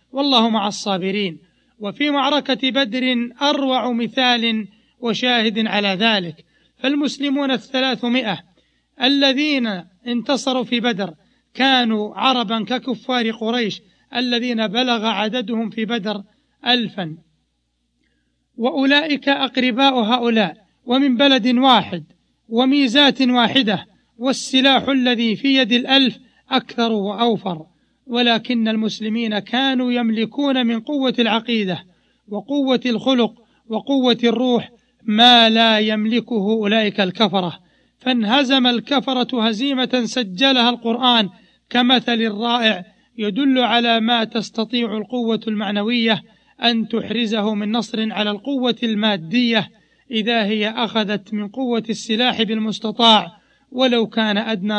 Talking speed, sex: 95 wpm, male